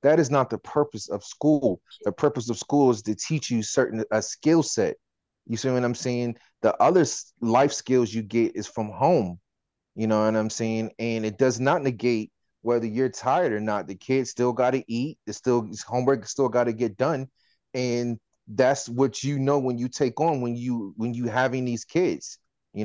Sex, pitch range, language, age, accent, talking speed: male, 110-130 Hz, English, 30-49, American, 215 wpm